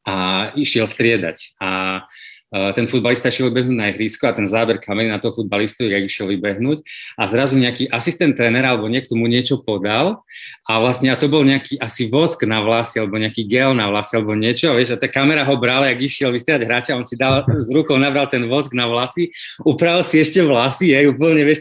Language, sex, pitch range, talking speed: Slovak, male, 115-145 Hz, 210 wpm